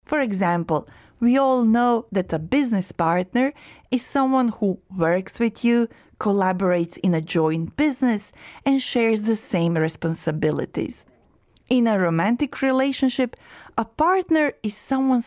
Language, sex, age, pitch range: Korean, female, 30-49, 195-265 Hz